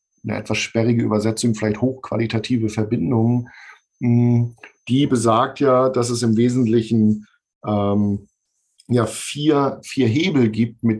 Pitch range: 115-135 Hz